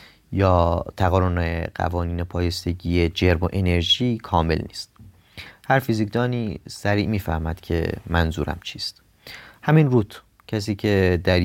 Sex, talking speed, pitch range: male, 110 wpm, 85-100 Hz